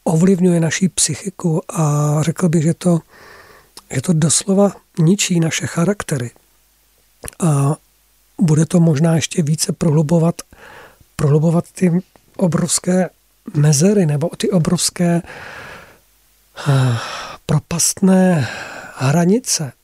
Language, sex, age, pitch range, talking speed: Czech, male, 50-69, 150-180 Hz, 90 wpm